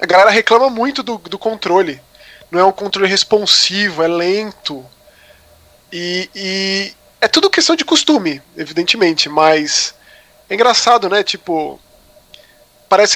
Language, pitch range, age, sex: Portuguese, 175-225 Hz, 20-39, male